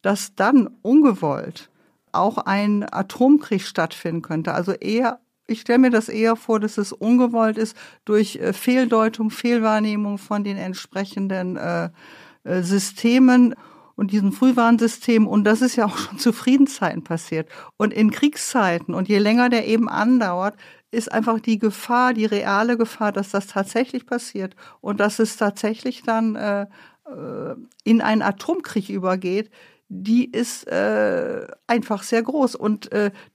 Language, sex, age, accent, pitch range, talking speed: German, female, 60-79, German, 195-230 Hz, 140 wpm